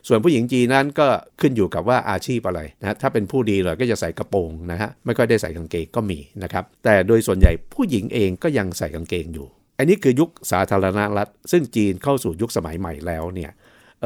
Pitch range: 95-125 Hz